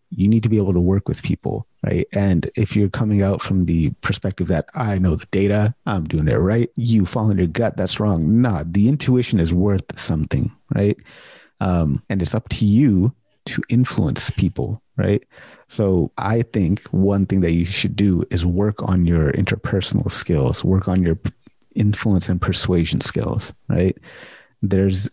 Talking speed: 180 wpm